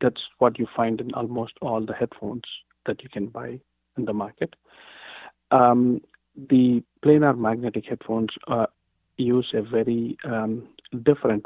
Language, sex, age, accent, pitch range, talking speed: English, male, 50-69, Indian, 105-120 Hz, 140 wpm